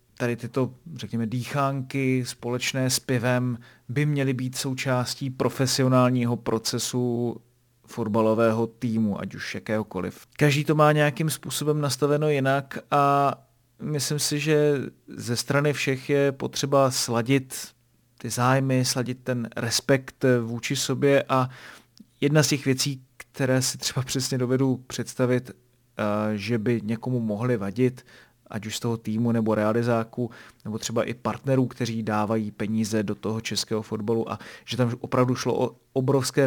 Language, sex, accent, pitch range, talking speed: Czech, male, native, 115-135 Hz, 135 wpm